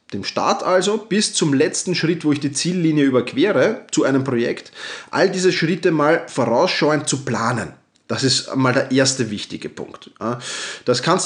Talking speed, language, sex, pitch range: 165 wpm, German, male, 120-165 Hz